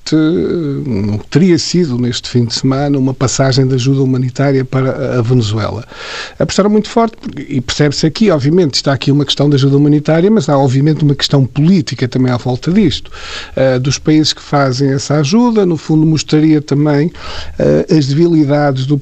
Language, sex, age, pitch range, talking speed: Portuguese, male, 50-69, 140-180 Hz, 170 wpm